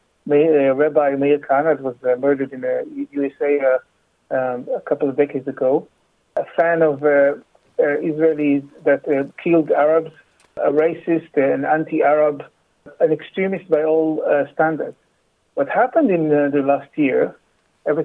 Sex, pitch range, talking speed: male, 140-160 Hz, 120 wpm